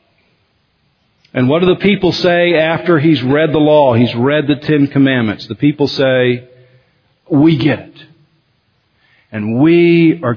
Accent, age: American, 50-69